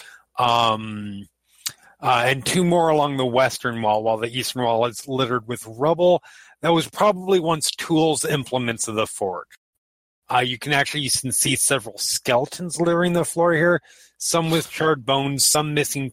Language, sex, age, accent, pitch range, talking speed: English, male, 30-49, American, 115-155 Hz, 165 wpm